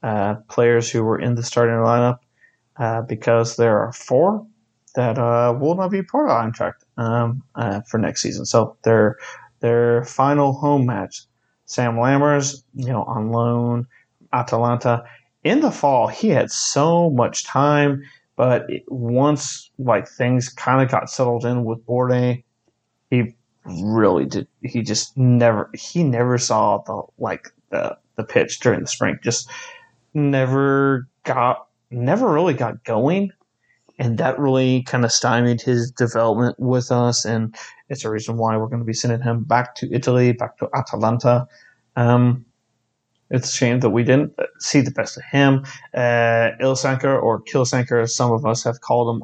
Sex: male